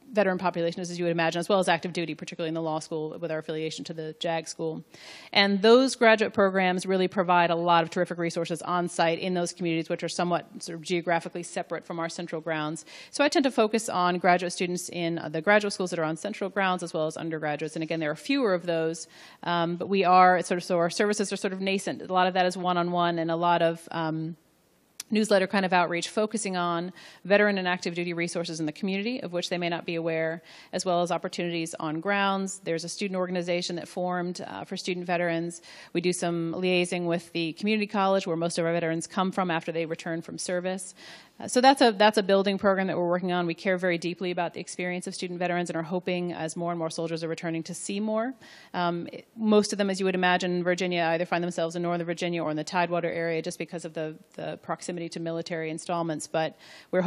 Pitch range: 165-185 Hz